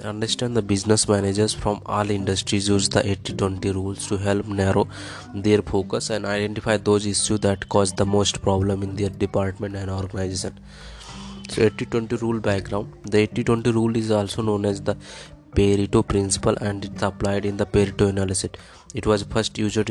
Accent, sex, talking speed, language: Indian, male, 165 wpm, English